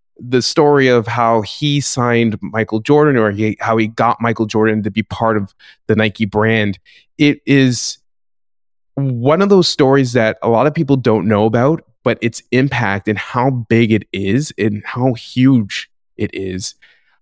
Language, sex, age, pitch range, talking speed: English, male, 20-39, 105-125 Hz, 165 wpm